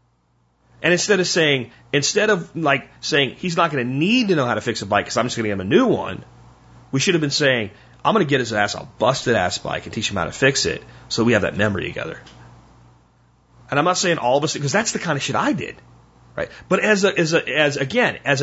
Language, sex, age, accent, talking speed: English, male, 30-49, American, 265 wpm